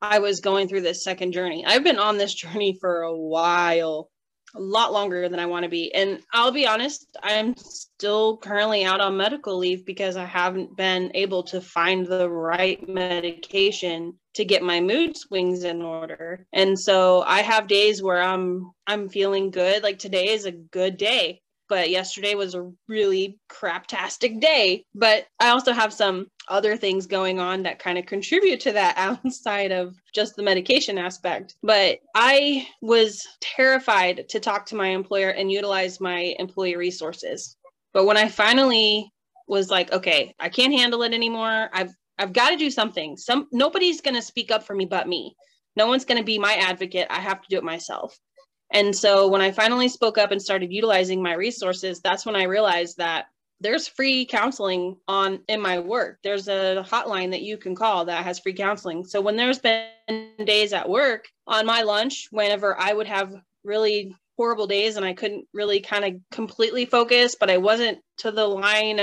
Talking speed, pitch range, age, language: 190 wpm, 185-220 Hz, 20-39, English